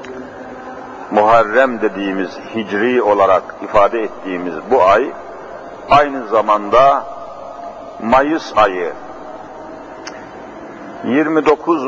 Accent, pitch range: native, 125-150 Hz